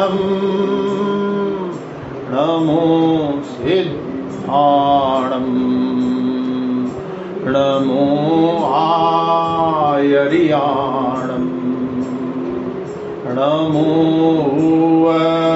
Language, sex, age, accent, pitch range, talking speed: Hindi, male, 40-59, native, 130-160 Hz, 40 wpm